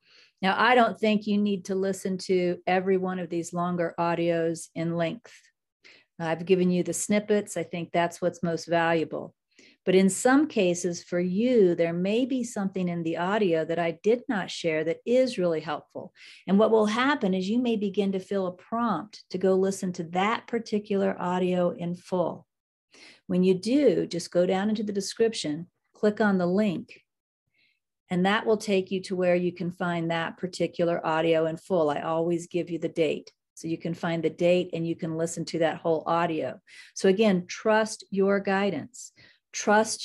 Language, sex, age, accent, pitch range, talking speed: English, female, 50-69, American, 170-205 Hz, 185 wpm